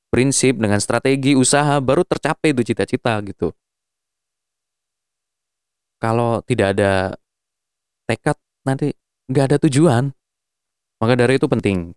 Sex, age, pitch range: male, 20-39, 115-145 Hz